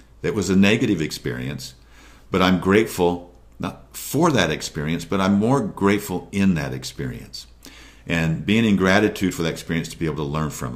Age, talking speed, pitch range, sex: 50-69, 180 wpm, 75-95 Hz, male